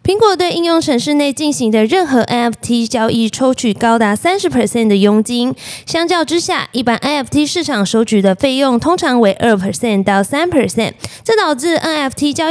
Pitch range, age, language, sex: 210-310 Hz, 20-39, Chinese, female